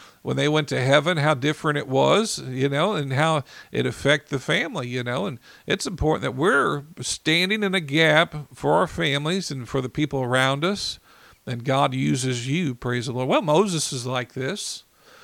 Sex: male